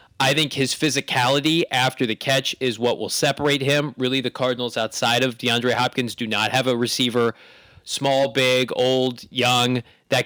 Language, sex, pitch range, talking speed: English, male, 125-145 Hz, 170 wpm